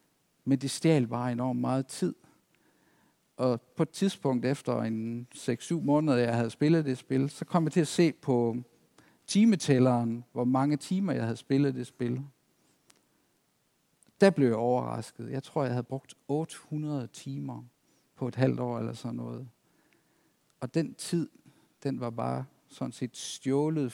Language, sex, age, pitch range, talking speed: Danish, male, 50-69, 120-150 Hz, 160 wpm